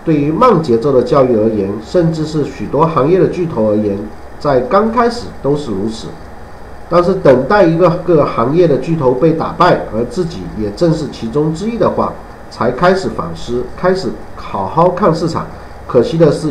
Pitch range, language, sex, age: 110-180 Hz, Chinese, male, 50-69